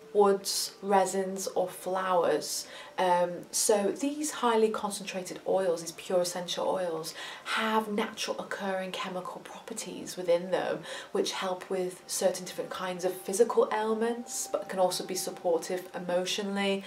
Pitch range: 170-195 Hz